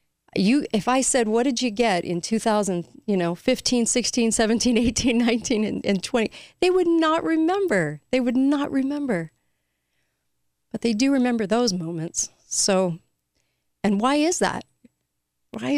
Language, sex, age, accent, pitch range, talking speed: English, female, 40-59, American, 170-230 Hz, 150 wpm